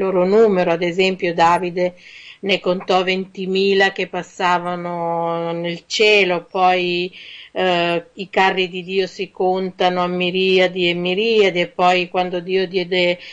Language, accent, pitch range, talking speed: Italian, native, 170-190 Hz, 130 wpm